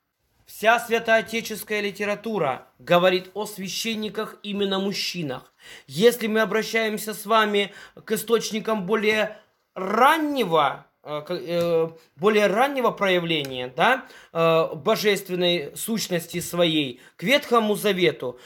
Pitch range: 175-225 Hz